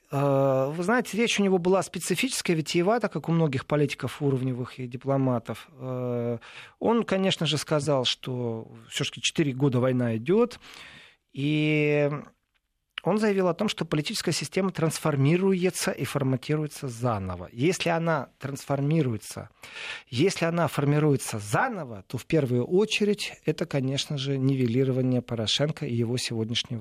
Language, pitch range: Russian, 130-180 Hz